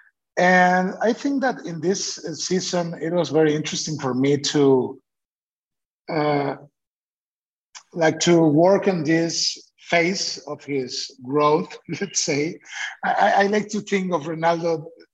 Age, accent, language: 50-69, Italian, English